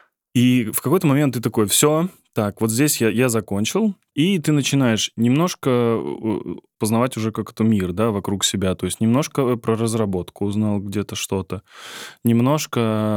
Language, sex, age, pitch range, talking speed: Russian, male, 10-29, 105-125 Hz, 150 wpm